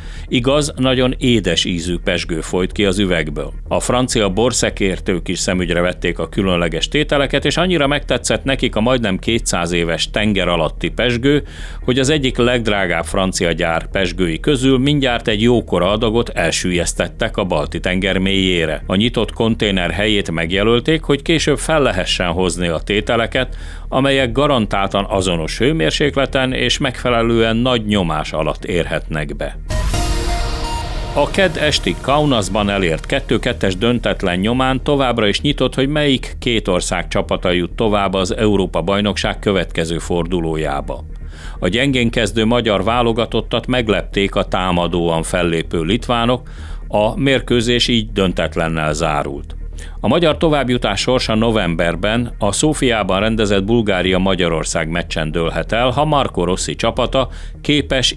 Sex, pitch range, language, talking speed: male, 85-125 Hz, Hungarian, 125 wpm